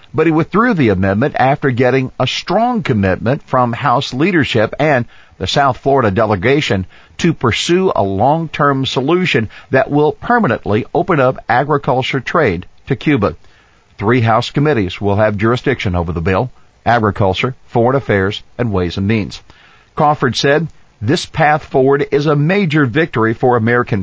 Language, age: English, 50-69